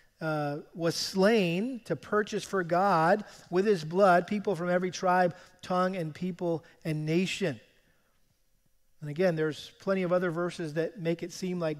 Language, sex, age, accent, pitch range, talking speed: English, male, 40-59, American, 155-185 Hz, 160 wpm